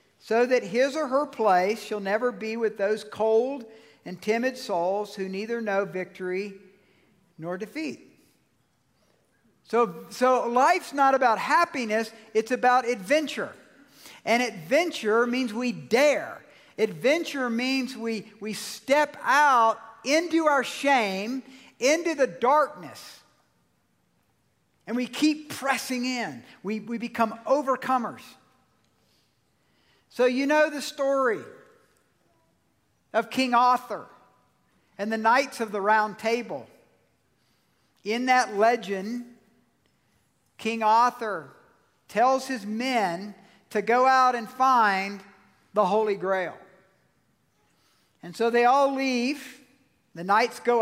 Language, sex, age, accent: English, male, 50-69, American